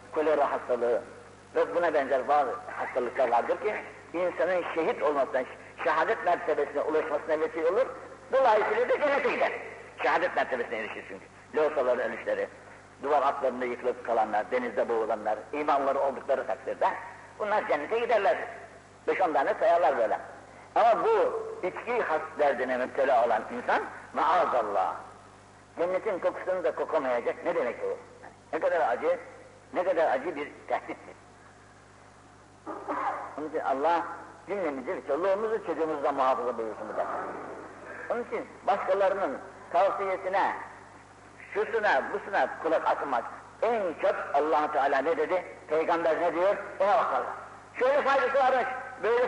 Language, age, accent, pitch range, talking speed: Turkish, 60-79, native, 140-230 Hz, 125 wpm